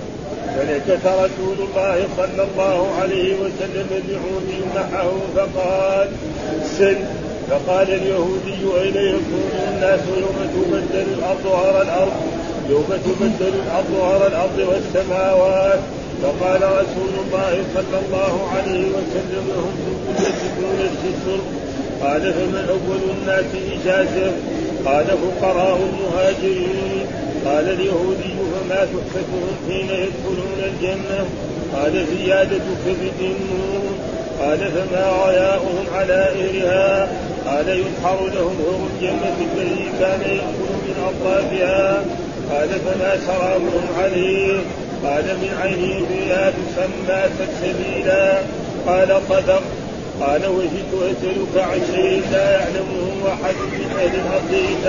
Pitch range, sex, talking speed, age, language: 185-195 Hz, male, 95 wpm, 40-59, Arabic